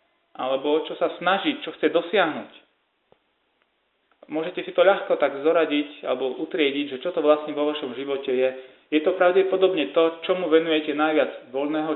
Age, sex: 30-49, male